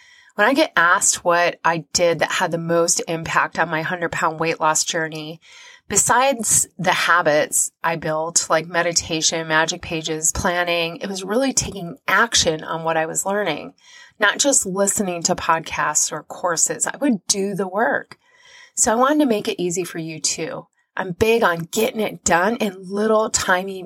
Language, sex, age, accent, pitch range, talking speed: English, female, 30-49, American, 165-230 Hz, 175 wpm